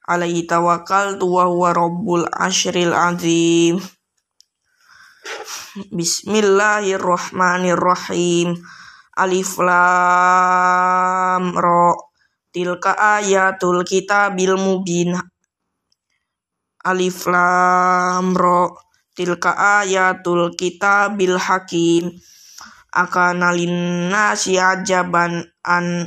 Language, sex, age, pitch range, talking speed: Indonesian, female, 20-39, 175-195 Hz, 60 wpm